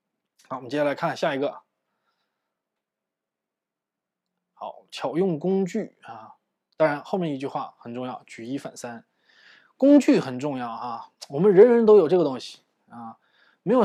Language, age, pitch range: Chinese, 20-39, 130-170 Hz